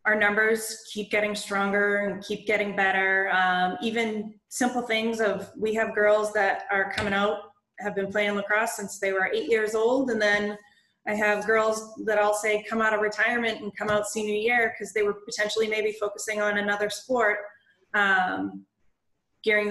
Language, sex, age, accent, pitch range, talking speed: English, female, 20-39, American, 195-220 Hz, 180 wpm